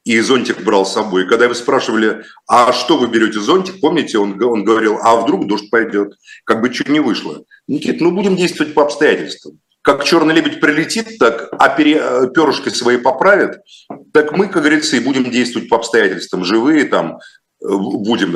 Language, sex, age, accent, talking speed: Russian, male, 40-59, native, 175 wpm